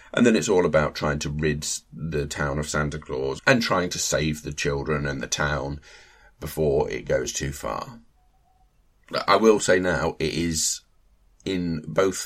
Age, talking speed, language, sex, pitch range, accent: 30-49, 170 wpm, English, male, 75-95 Hz, British